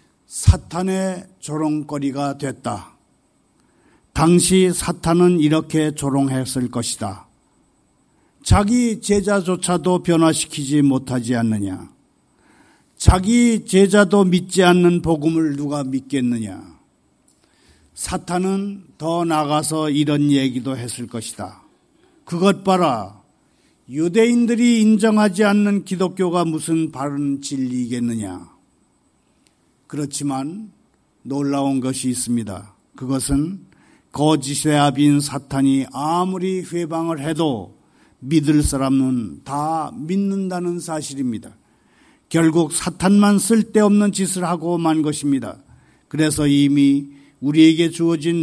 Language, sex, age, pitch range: Korean, male, 50-69, 140-185 Hz